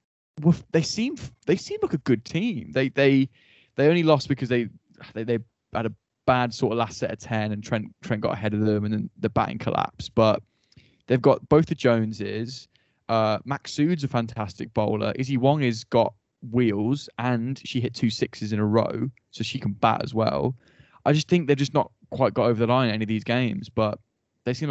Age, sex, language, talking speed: 10-29, male, English, 215 wpm